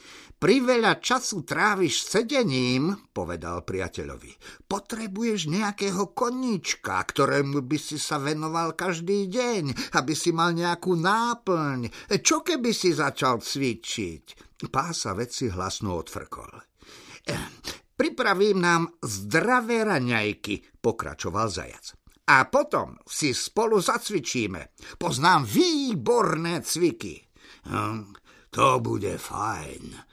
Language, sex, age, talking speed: Slovak, male, 50-69, 100 wpm